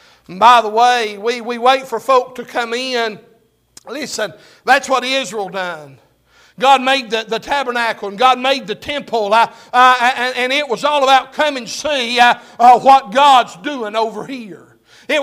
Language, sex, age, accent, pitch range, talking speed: English, male, 60-79, American, 220-280 Hz, 180 wpm